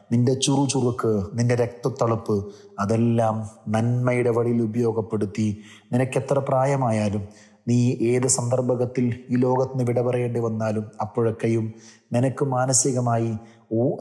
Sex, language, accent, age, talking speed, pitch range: male, Malayalam, native, 30-49, 95 wpm, 110-125 Hz